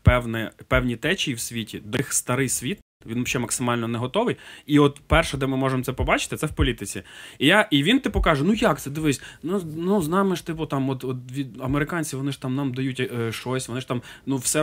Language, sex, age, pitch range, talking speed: Ukrainian, male, 20-39, 115-155 Hz, 225 wpm